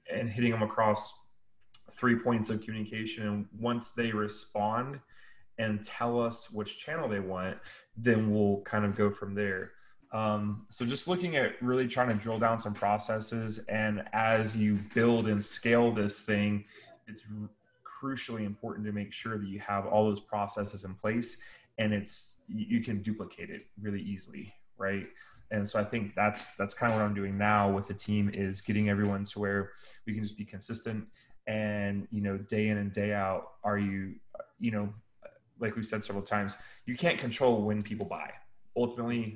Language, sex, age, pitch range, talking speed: English, male, 20-39, 105-115 Hz, 185 wpm